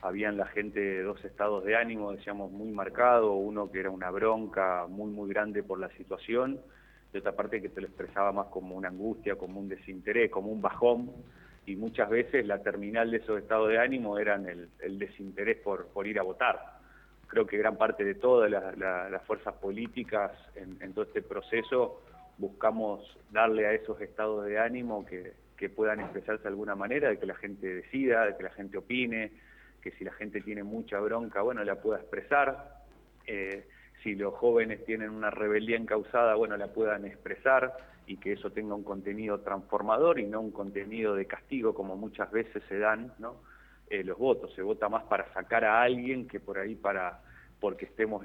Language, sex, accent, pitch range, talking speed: Spanish, male, Argentinian, 100-125 Hz, 195 wpm